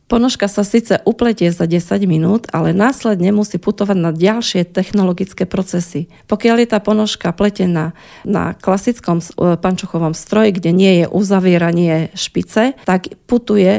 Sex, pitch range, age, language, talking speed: female, 170-210 Hz, 40-59, Slovak, 135 wpm